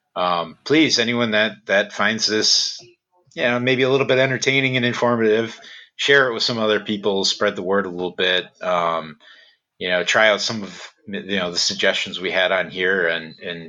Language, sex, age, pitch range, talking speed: English, male, 30-49, 90-110 Hz, 195 wpm